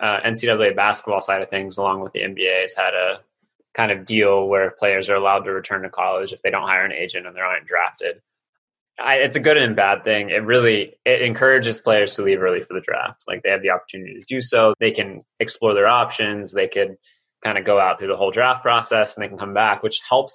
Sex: male